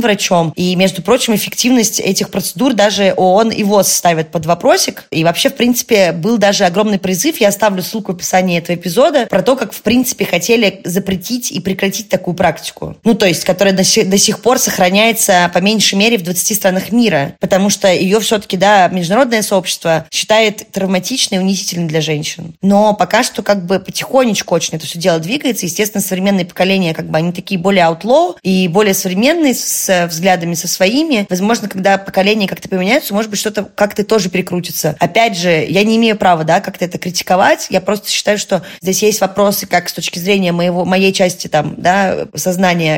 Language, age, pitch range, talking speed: Russian, 20-39, 185-220 Hz, 190 wpm